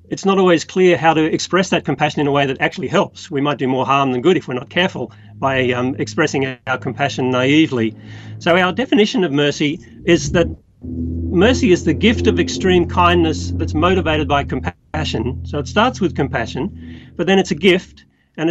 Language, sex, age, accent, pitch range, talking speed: English, male, 40-59, Australian, 135-175 Hz, 200 wpm